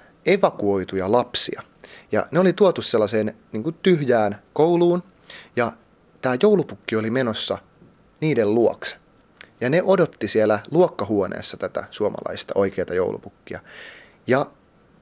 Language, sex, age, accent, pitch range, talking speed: Finnish, male, 30-49, native, 105-170 Hz, 105 wpm